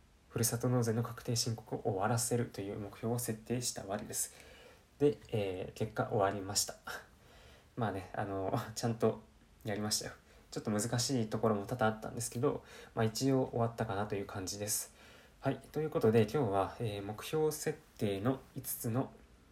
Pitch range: 105-125 Hz